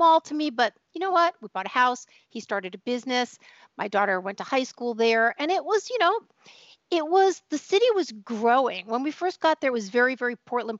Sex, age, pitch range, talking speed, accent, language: female, 50-69, 215-310 Hz, 235 wpm, American, English